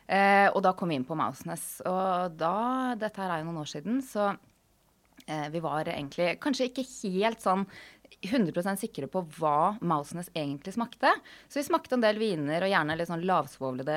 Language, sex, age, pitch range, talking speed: English, female, 20-39, 155-210 Hz, 180 wpm